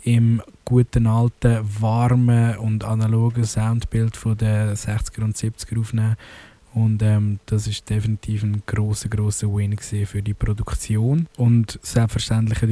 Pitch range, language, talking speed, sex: 105-115 Hz, German, 125 wpm, male